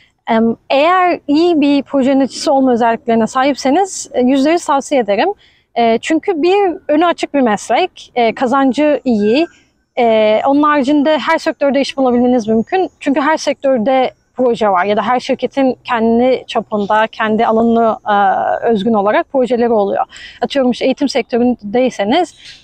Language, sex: Turkish, female